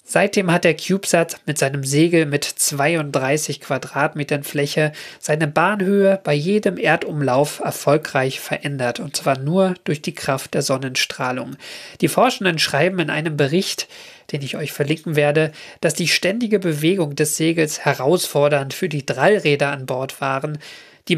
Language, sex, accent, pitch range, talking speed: German, male, German, 145-180 Hz, 145 wpm